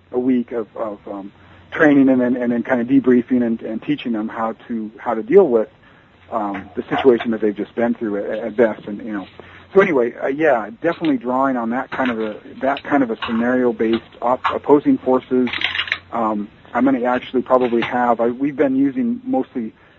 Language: English